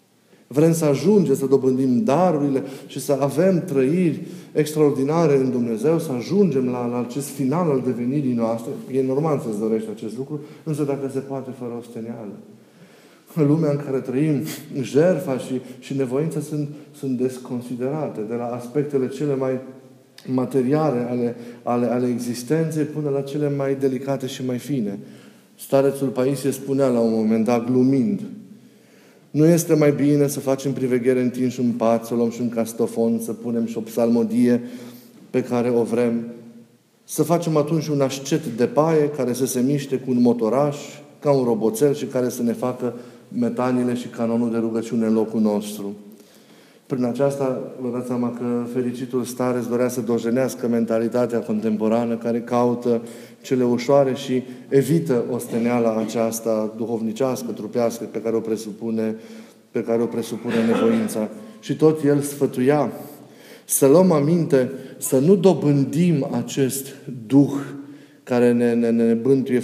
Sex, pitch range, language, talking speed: male, 120-140 Hz, Romanian, 150 wpm